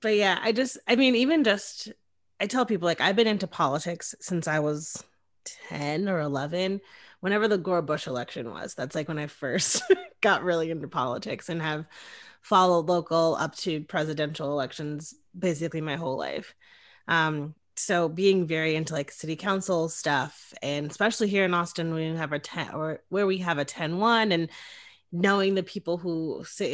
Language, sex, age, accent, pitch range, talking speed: English, female, 20-39, American, 160-205 Hz, 175 wpm